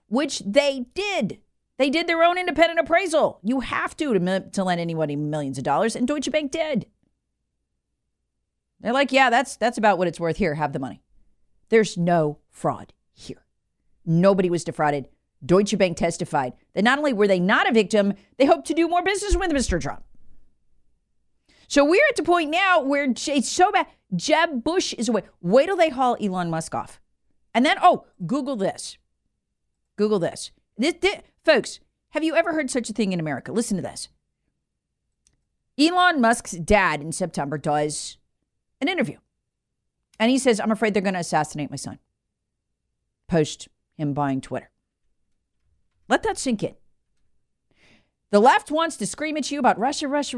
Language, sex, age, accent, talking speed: English, female, 40-59, American, 170 wpm